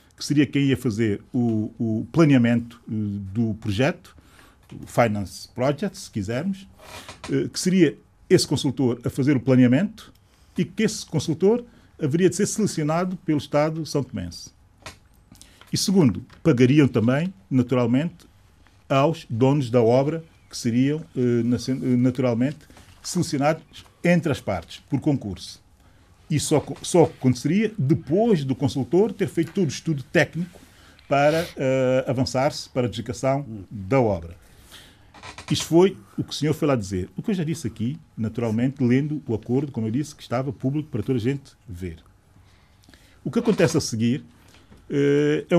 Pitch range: 110-150 Hz